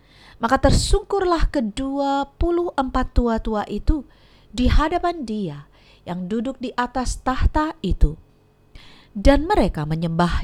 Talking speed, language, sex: 115 wpm, Indonesian, female